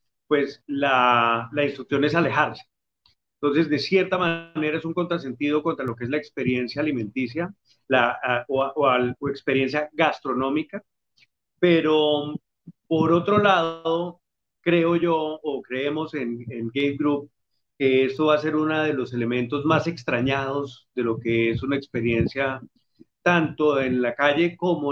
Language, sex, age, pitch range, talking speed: Spanish, male, 40-59, 130-165 Hz, 145 wpm